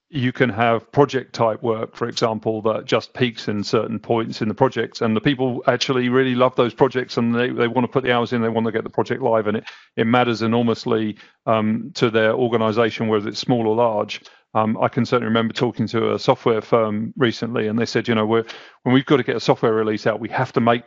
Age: 40-59